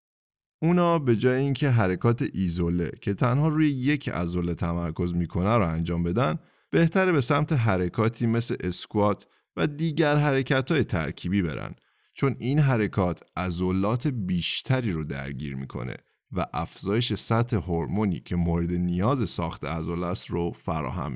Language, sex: Persian, male